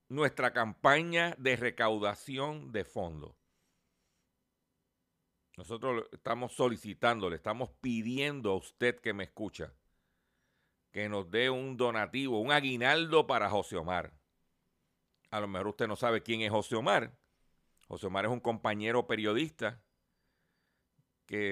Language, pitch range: Spanish, 90-120 Hz